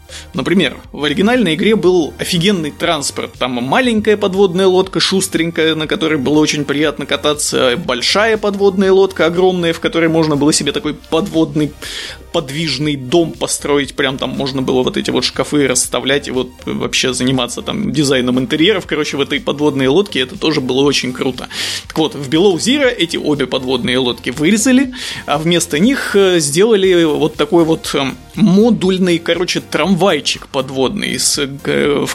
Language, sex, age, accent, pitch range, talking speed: Russian, male, 20-39, native, 140-190 Hz, 150 wpm